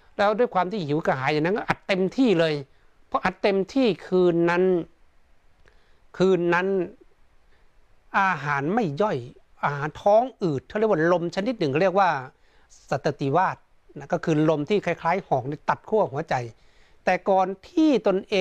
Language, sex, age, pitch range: Thai, male, 60-79, 150-200 Hz